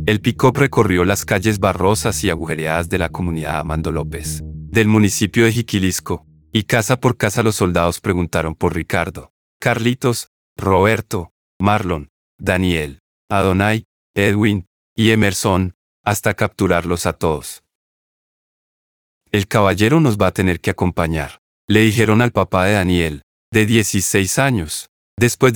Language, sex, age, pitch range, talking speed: Spanish, male, 40-59, 85-110 Hz, 130 wpm